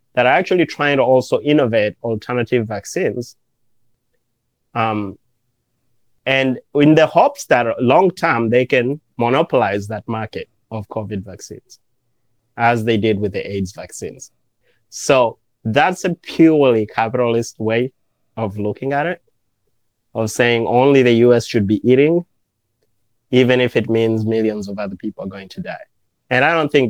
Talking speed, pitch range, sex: 145 wpm, 110-125 Hz, male